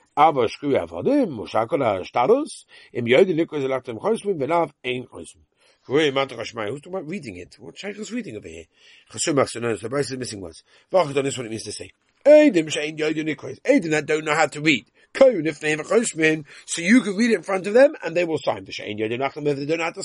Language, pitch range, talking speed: English, 140-195 Hz, 125 wpm